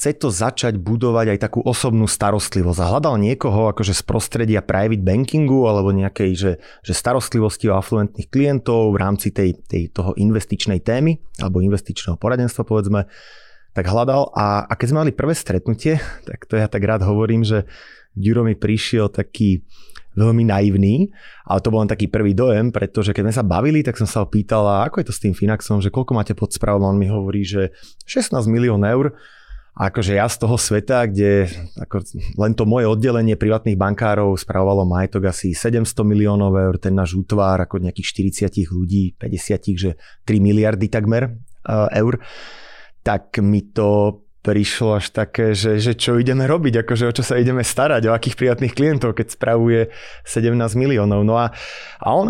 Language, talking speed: Czech, 175 wpm